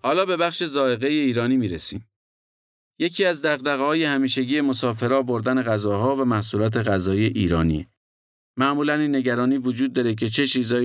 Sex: male